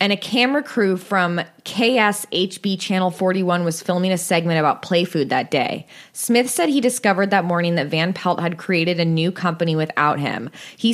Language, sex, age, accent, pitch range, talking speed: English, female, 20-39, American, 165-200 Hz, 185 wpm